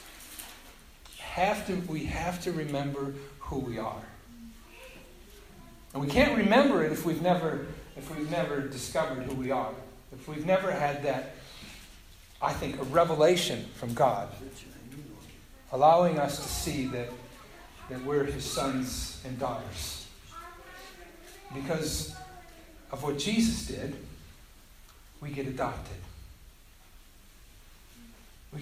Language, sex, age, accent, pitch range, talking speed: English, male, 50-69, American, 120-165 Hz, 110 wpm